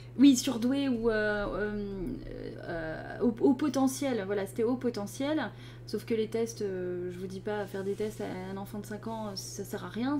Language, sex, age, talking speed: French, female, 20-39, 205 wpm